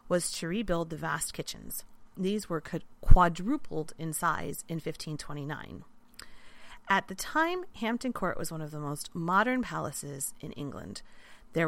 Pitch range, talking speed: 165-230 Hz, 145 wpm